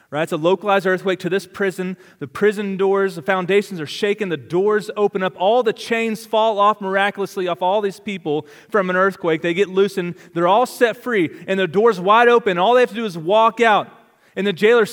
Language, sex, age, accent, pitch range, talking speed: English, male, 30-49, American, 190-235 Hz, 220 wpm